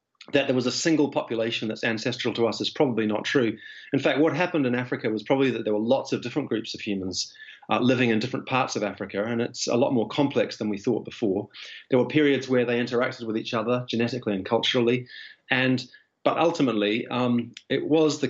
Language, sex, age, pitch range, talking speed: English, male, 30-49, 110-130 Hz, 220 wpm